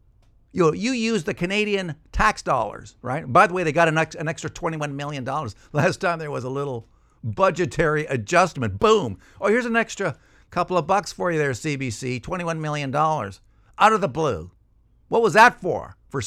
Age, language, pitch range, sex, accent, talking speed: 50-69, English, 105-160 Hz, male, American, 185 wpm